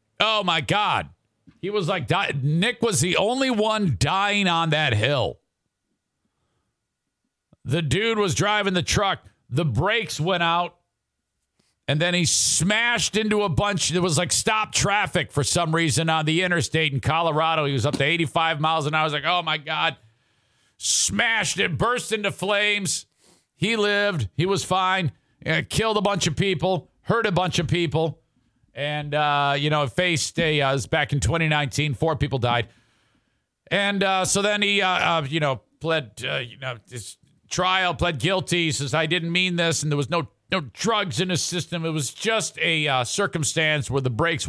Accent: American